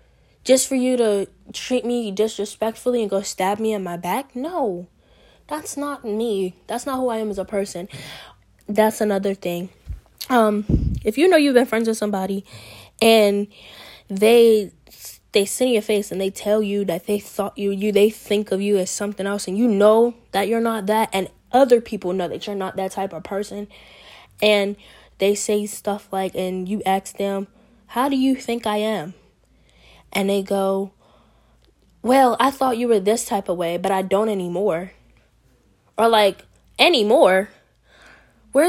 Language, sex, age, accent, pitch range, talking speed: English, female, 10-29, American, 195-235 Hz, 175 wpm